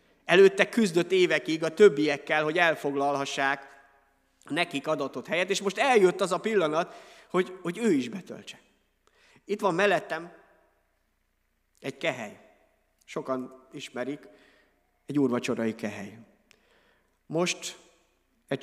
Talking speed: 105 wpm